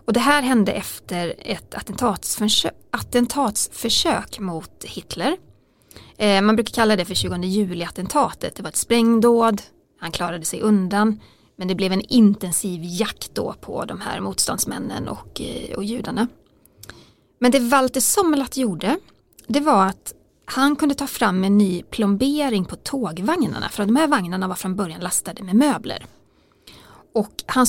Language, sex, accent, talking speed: English, female, Swedish, 145 wpm